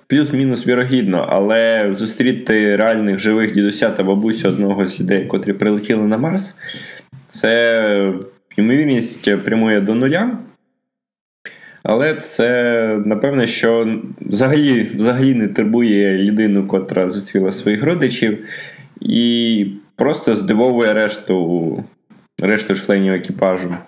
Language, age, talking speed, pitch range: Ukrainian, 20-39, 105 wpm, 95-120 Hz